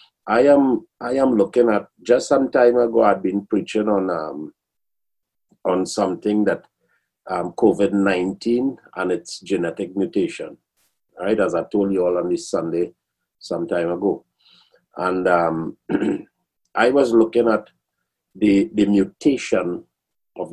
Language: English